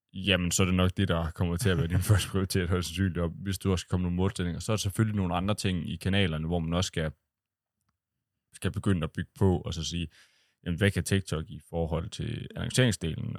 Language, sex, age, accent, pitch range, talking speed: Danish, male, 20-39, native, 90-110 Hz, 220 wpm